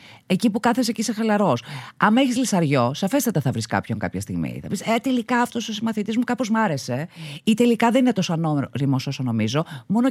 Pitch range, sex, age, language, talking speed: 140-215 Hz, female, 30-49, Greek, 210 wpm